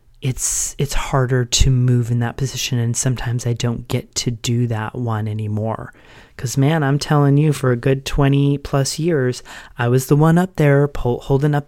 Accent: American